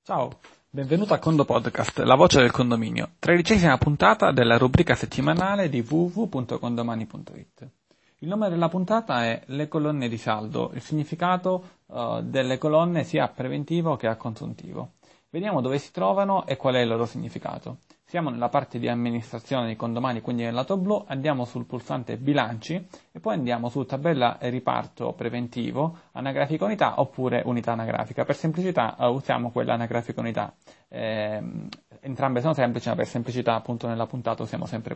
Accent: native